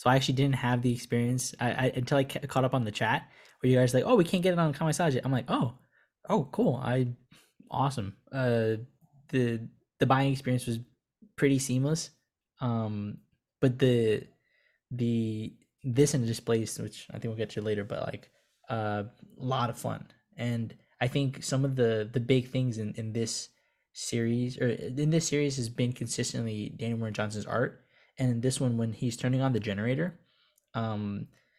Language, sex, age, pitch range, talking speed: English, male, 10-29, 110-130 Hz, 190 wpm